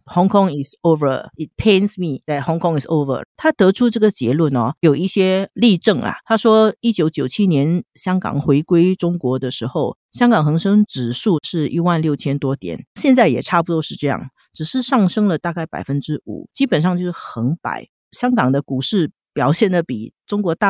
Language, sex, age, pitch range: Chinese, female, 50-69, 145-195 Hz